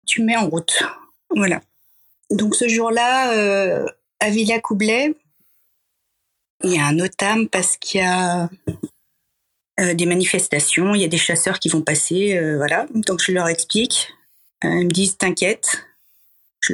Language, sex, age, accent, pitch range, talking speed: French, female, 40-59, French, 180-220 Hz, 160 wpm